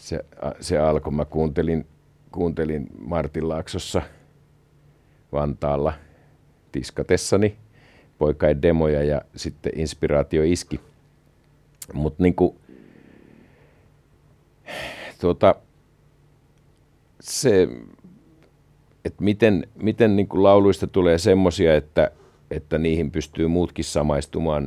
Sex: male